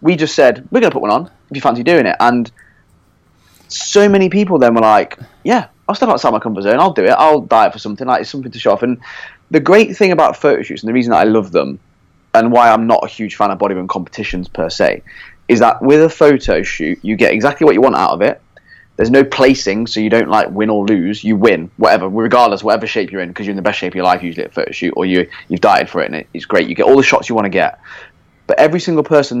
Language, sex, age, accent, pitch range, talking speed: English, male, 20-39, British, 105-130 Hz, 275 wpm